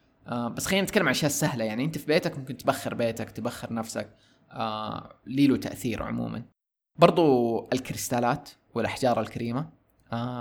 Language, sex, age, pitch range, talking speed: Arabic, male, 20-39, 110-130 Hz, 145 wpm